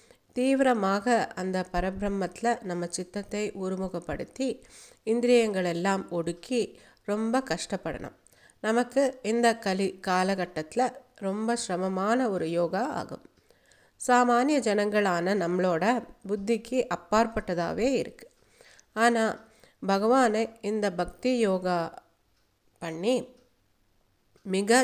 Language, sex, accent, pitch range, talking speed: Tamil, female, native, 180-235 Hz, 75 wpm